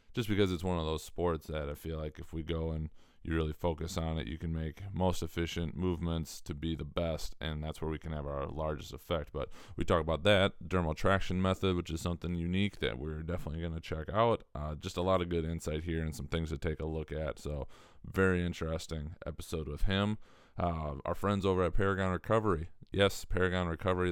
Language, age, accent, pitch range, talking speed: English, 20-39, American, 80-90 Hz, 225 wpm